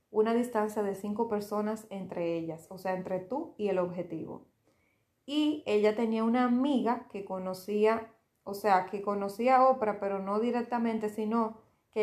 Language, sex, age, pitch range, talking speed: Spanish, female, 30-49, 190-230 Hz, 160 wpm